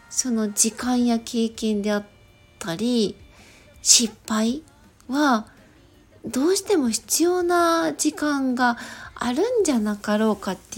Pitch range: 210-305 Hz